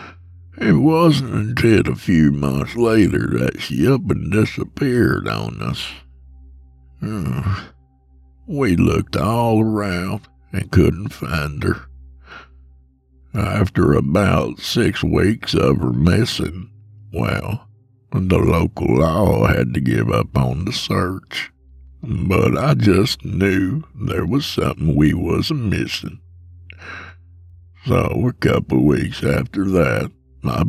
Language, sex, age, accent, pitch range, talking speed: English, male, 60-79, American, 65-100 Hz, 110 wpm